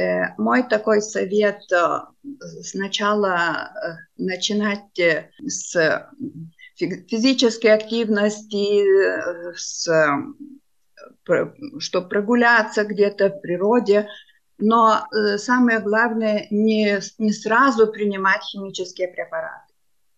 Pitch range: 195-230 Hz